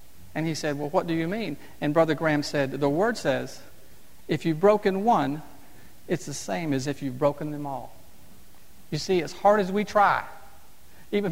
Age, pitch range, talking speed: 50-69, 155-220 Hz, 190 wpm